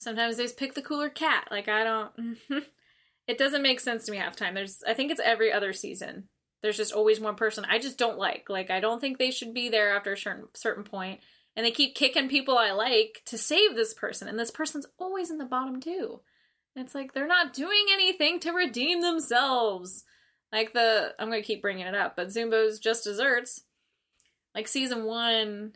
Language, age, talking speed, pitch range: English, 10-29, 205 wpm, 210-270 Hz